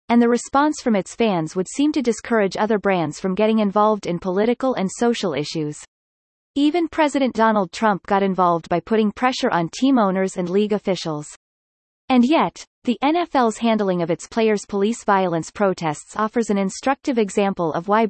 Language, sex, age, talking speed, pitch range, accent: English, female, 30-49, 170 wpm, 180-245 Hz, American